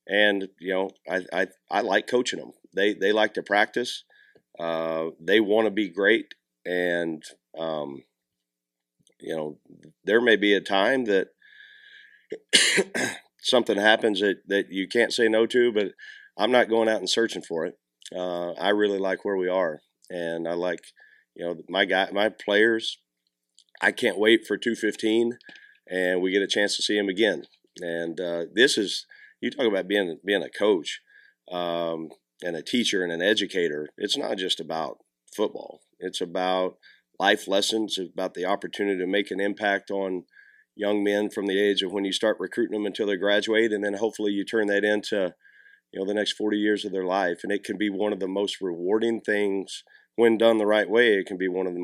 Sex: male